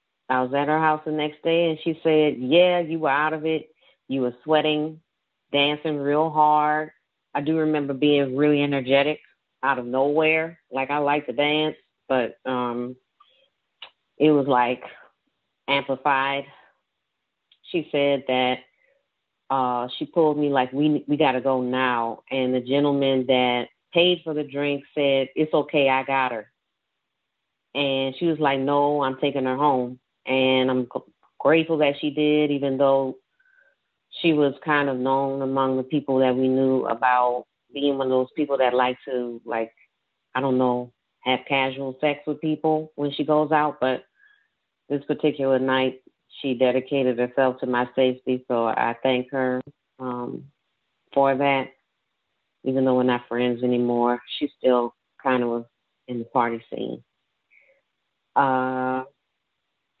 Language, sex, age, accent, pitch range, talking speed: English, female, 30-49, American, 130-150 Hz, 155 wpm